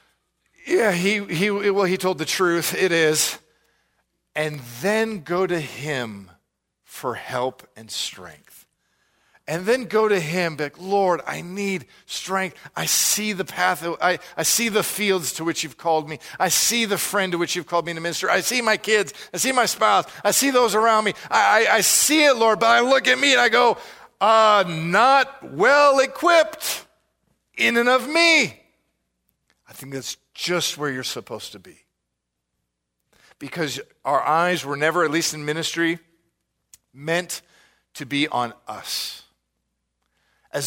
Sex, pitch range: male, 150-205 Hz